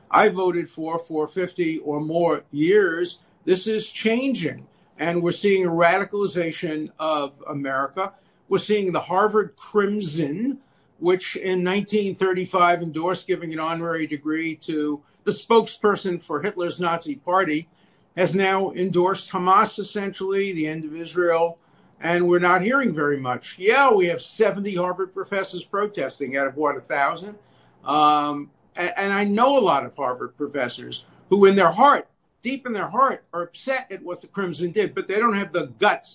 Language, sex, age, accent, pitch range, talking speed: English, male, 50-69, American, 155-205 Hz, 155 wpm